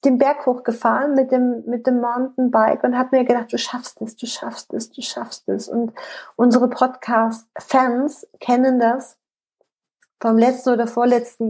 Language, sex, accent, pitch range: German, female, German, 215-255 Hz